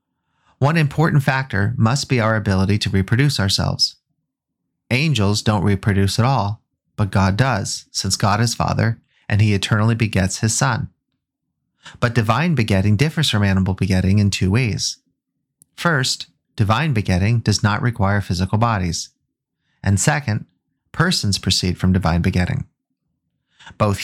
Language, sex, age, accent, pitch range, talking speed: English, male, 30-49, American, 100-130 Hz, 135 wpm